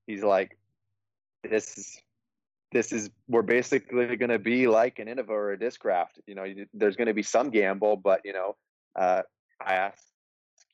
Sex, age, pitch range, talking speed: male, 20-39, 100-115 Hz, 170 wpm